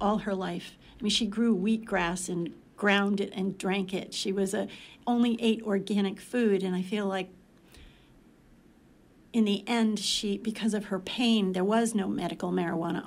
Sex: female